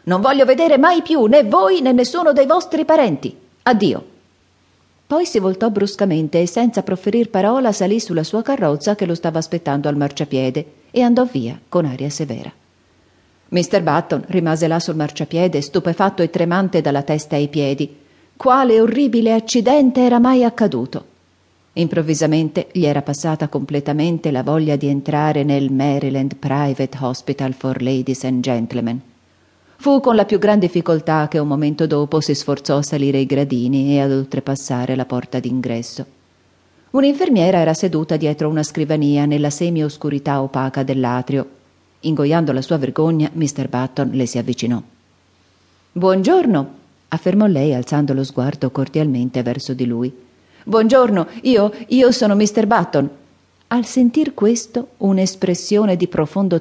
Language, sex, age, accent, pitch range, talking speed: Italian, female, 40-59, native, 135-195 Hz, 145 wpm